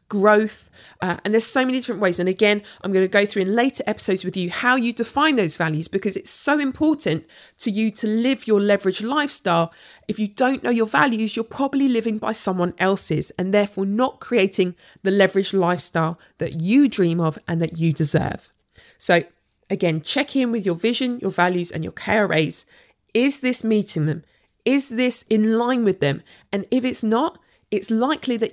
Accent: British